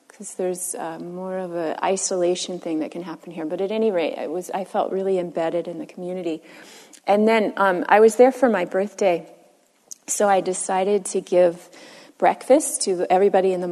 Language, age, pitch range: English, 30-49, 180-225 Hz